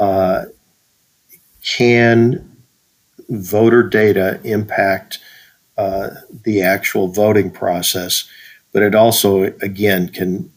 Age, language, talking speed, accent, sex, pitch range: 50-69, English, 85 wpm, American, male, 95-120 Hz